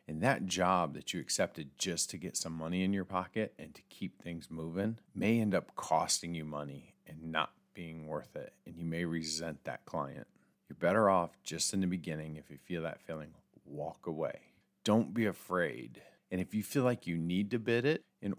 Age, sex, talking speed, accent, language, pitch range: 40-59, male, 210 wpm, American, English, 80-100 Hz